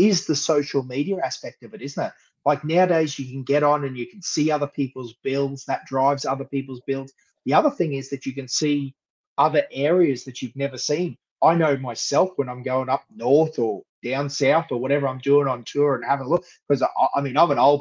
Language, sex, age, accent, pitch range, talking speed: English, male, 30-49, Australian, 135-155 Hz, 235 wpm